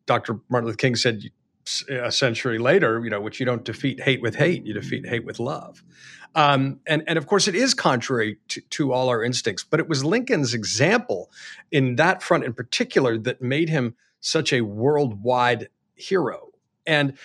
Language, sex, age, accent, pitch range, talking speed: English, male, 40-59, American, 120-150 Hz, 185 wpm